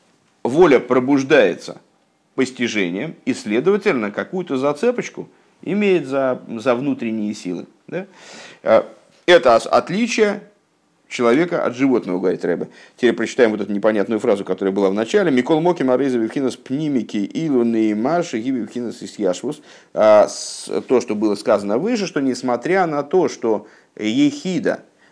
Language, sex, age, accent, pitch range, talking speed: Russian, male, 50-69, native, 105-145 Hz, 120 wpm